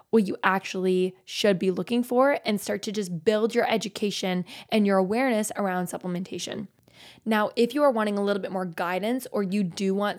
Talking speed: 195 wpm